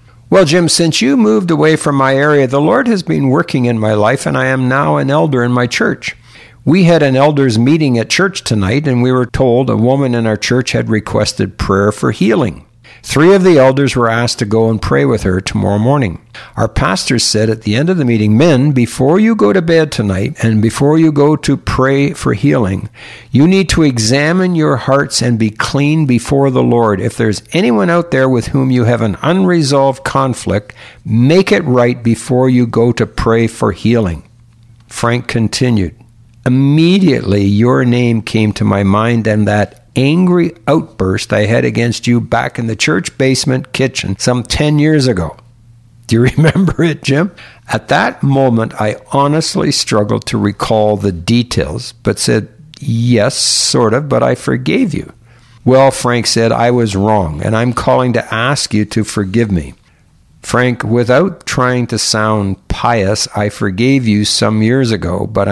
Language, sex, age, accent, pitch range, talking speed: English, male, 60-79, American, 110-140 Hz, 180 wpm